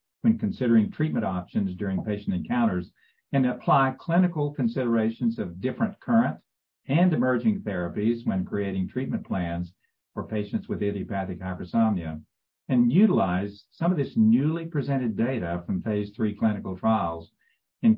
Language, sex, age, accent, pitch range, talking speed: English, male, 50-69, American, 100-135 Hz, 135 wpm